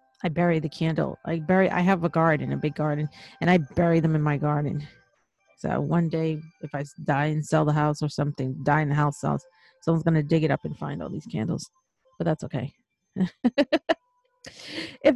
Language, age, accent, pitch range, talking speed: English, 40-59, American, 165-210 Hz, 205 wpm